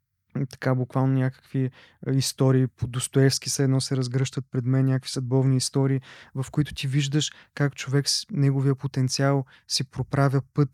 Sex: male